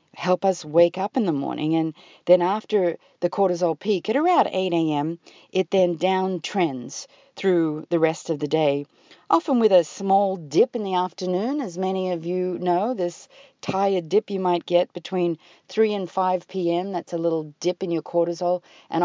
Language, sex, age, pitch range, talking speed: English, female, 40-59, 165-195 Hz, 185 wpm